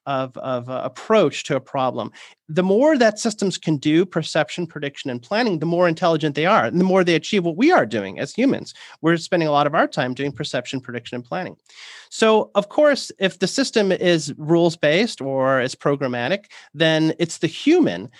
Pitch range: 135-190 Hz